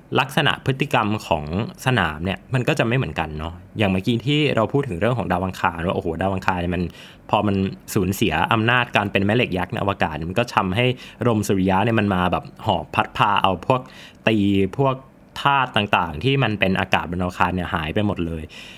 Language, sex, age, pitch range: Thai, male, 20-39, 95-130 Hz